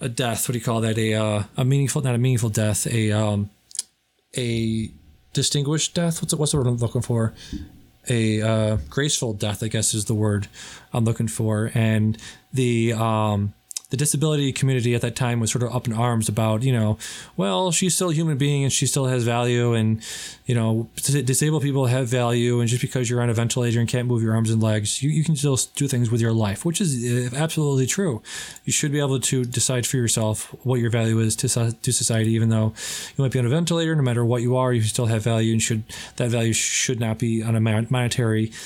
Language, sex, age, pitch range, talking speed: English, male, 20-39, 115-135 Hz, 225 wpm